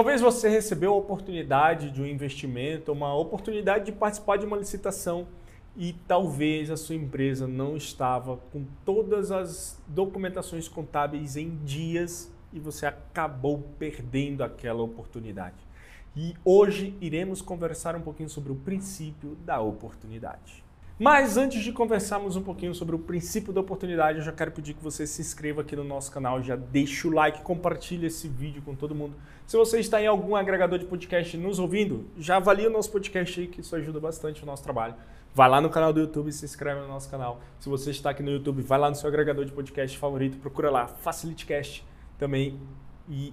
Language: Portuguese